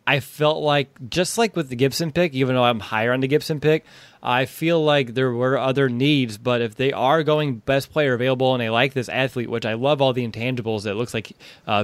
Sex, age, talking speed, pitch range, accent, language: male, 20-39, 240 wpm, 115-135 Hz, American, English